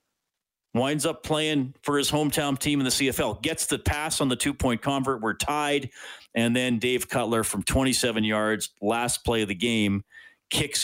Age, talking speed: 40-59, 175 wpm